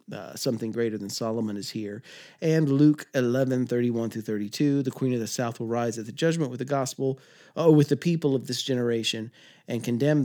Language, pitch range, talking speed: English, 115-145 Hz, 195 wpm